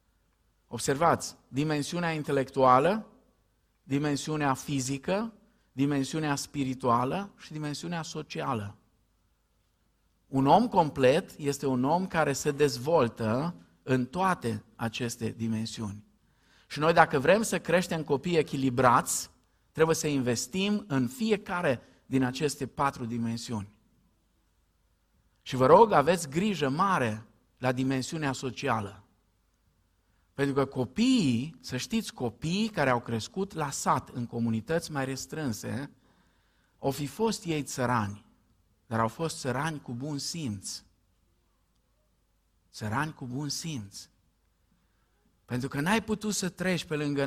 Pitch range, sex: 115-170 Hz, male